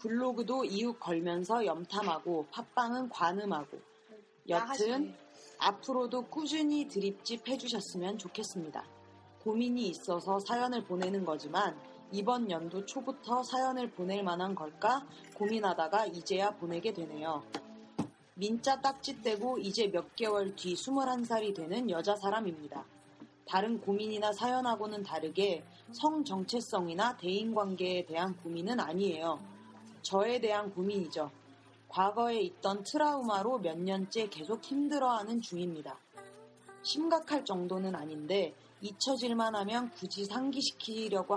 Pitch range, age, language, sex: 180-240 Hz, 30-49, Korean, female